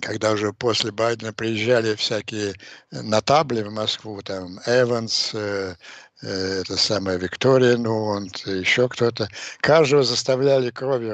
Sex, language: male, Russian